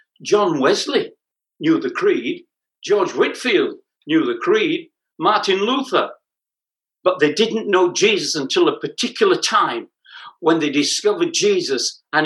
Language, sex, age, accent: English, male, 60-79, British